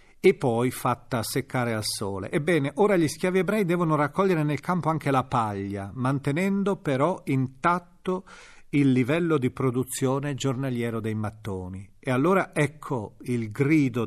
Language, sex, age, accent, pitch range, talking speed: Italian, male, 40-59, native, 120-165 Hz, 140 wpm